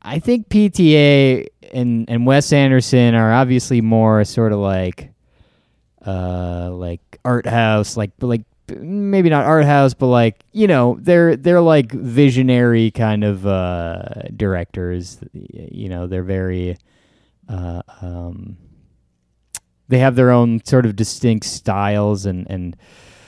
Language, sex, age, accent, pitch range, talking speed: English, male, 20-39, American, 100-130 Hz, 130 wpm